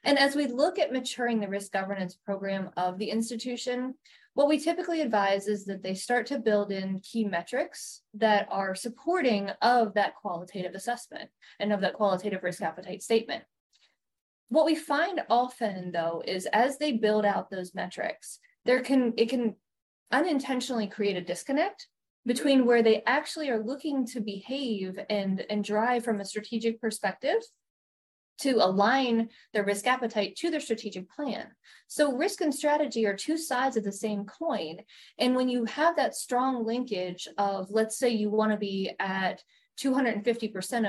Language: English